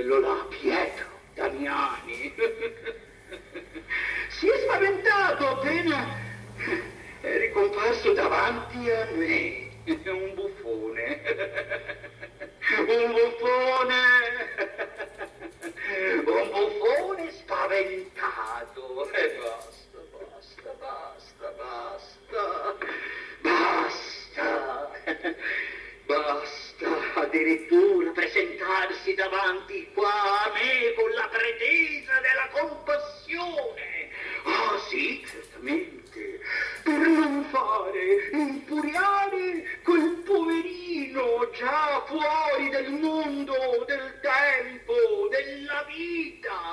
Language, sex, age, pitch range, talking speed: Italian, male, 60-79, 285-410 Hz, 70 wpm